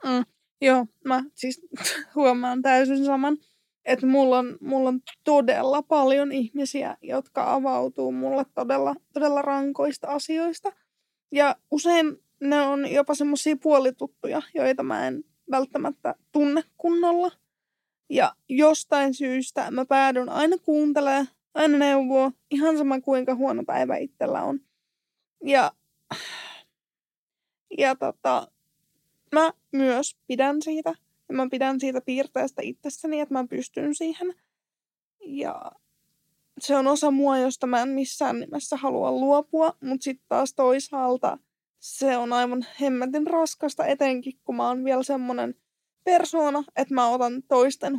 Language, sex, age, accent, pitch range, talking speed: Finnish, female, 20-39, native, 260-300 Hz, 125 wpm